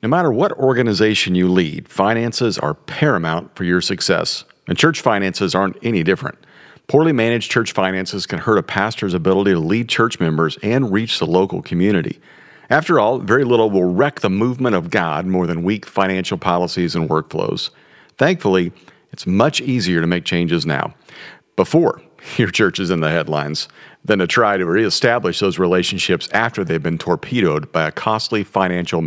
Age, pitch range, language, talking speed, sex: 50-69, 90-130 Hz, English, 170 wpm, male